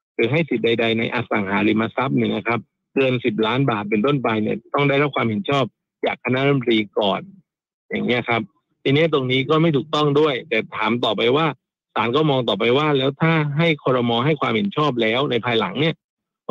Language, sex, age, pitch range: Thai, male, 60-79, 115-150 Hz